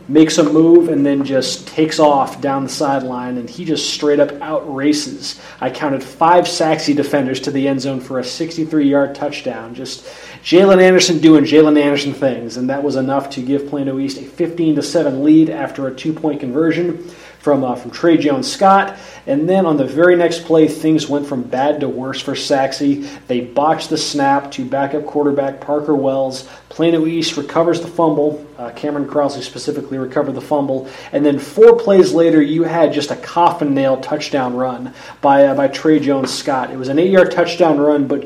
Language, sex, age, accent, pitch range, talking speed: English, male, 30-49, American, 140-170 Hz, 180 wpm